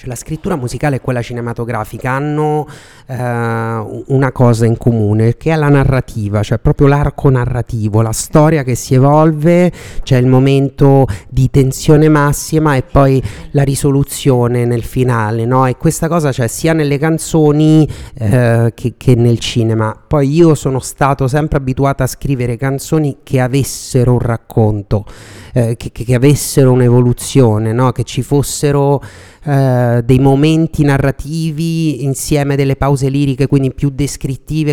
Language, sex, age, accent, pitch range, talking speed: Italian, male, 30-49, native, 120-145 Hz, 150 wpm